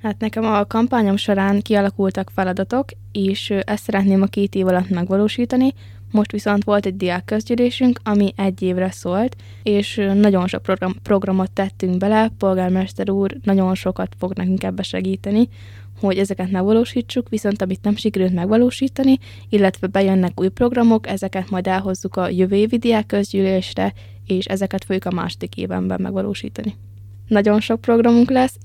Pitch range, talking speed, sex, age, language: 185-210 Hz, 145 wpm, female, 20-39, Hungarian